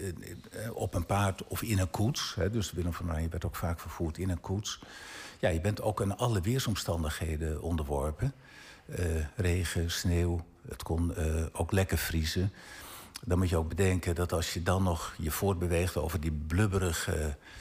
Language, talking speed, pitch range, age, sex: Dutch, 170 wpm, 85-105 Hz, 60-79, male